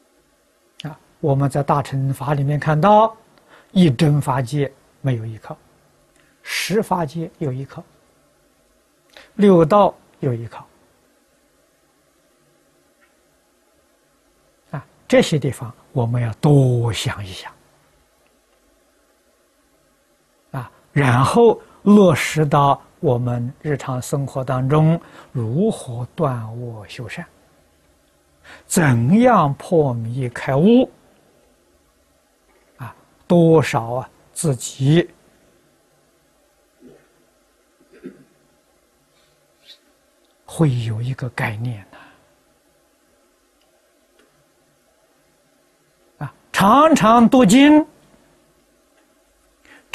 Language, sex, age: Chinese, male, 60-79